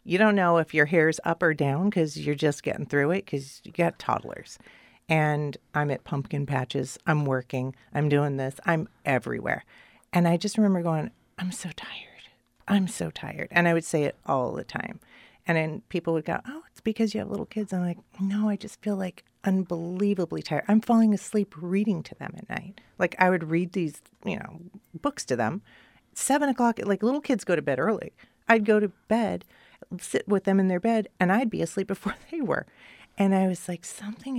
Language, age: English, 40-59